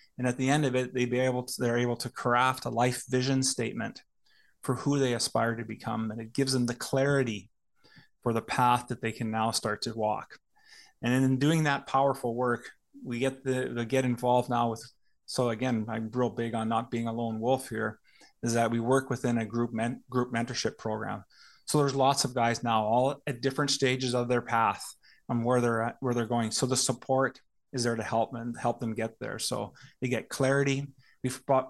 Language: English